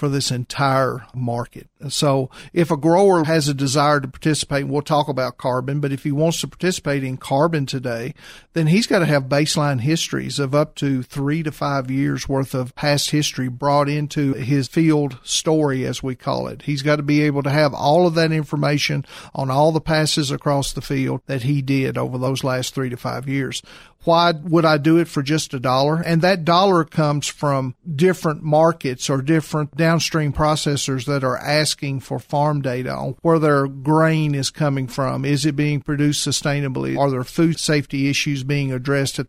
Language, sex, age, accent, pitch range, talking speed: English, male, 50-69, American, 135-155 Hz, 195 wpm